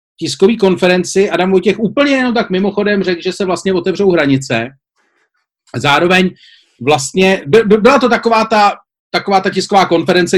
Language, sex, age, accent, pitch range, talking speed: Czech, male, 40-59, native, 170-215 Hz, 150 wpm